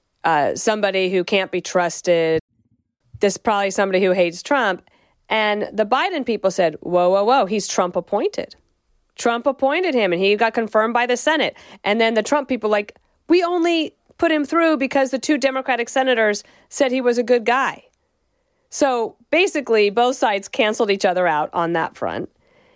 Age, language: 40-59, English